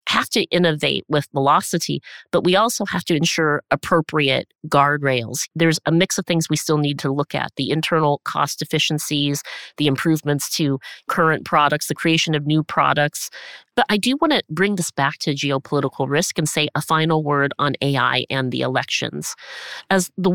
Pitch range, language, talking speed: 145-180 Hz, English, 180 wpm